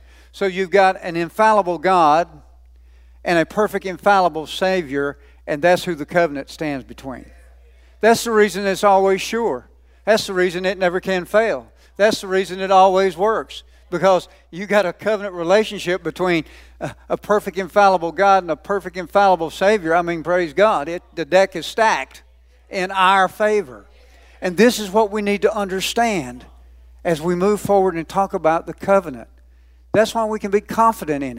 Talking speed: 170 wpm